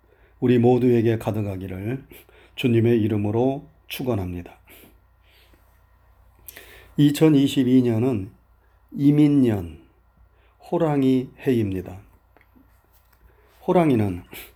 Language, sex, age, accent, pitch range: Korean, male, 40-59, native, 100-140 Hz